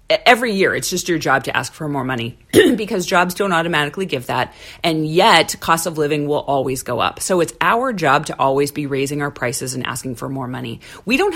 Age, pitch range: 40-59, 140-175 Hz